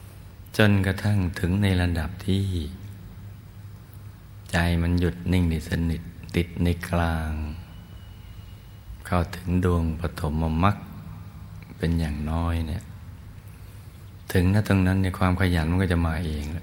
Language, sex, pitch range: Thai, male, 85-95 Hz